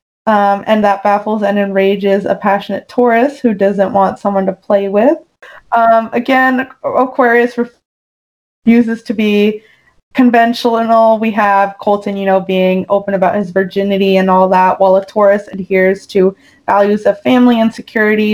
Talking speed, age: 150 wpm, 20-39